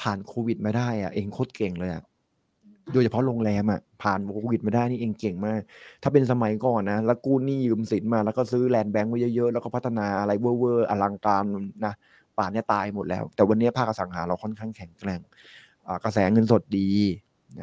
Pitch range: 100-115 Hz